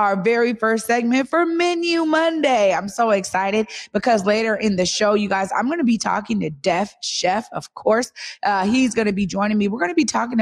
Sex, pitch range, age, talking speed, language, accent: female, 180-220 Hz, 20-39, 225 wpm, English, American